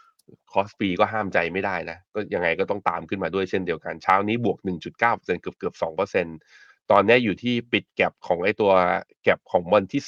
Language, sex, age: Thai, male, 20-39